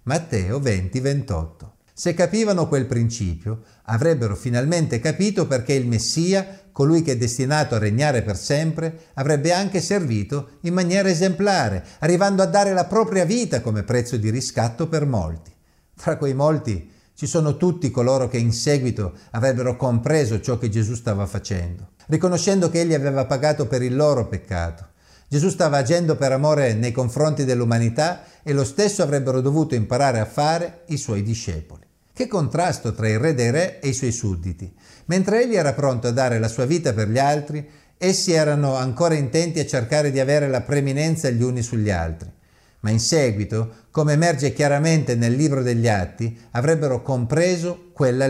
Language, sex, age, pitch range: Italian, male, 50-69, 115-160 Hz